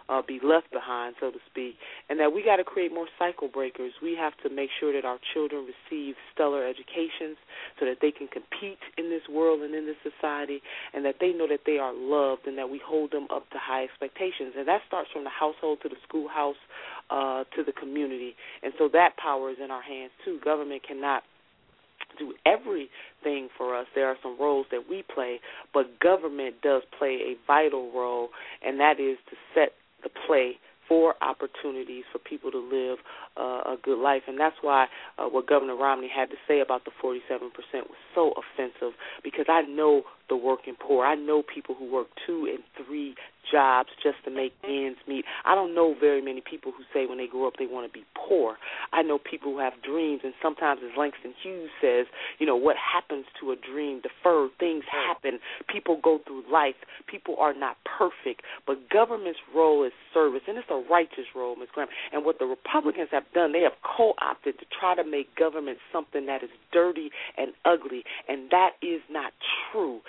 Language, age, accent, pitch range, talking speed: English, 30-49, American, 135-170 Hz, 200 wpm